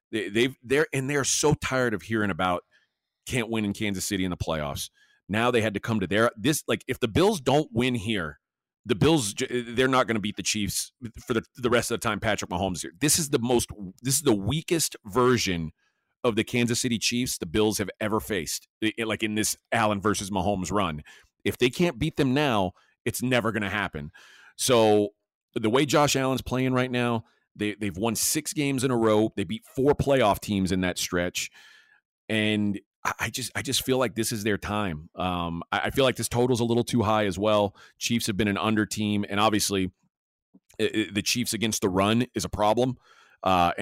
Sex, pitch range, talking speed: male, 100-125 Hz, 215 wpm